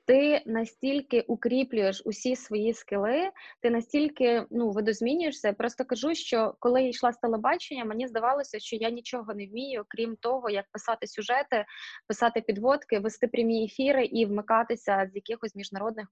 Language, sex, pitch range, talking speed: Ukrainian, female, 220-265 Hz, 150 wpm